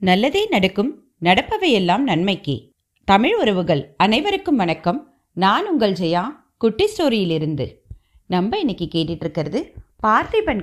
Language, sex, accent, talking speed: Tamil, female, native, 100 wpm